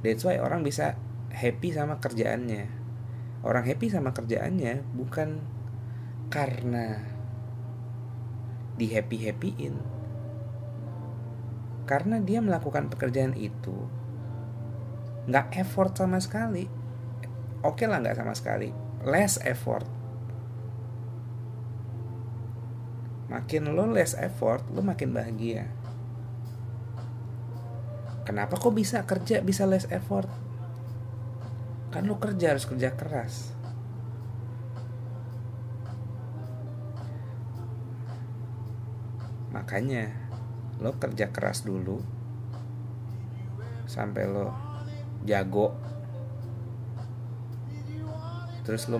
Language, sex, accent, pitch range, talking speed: Indonesian, male, native, 115-120 Hz, 75 wpm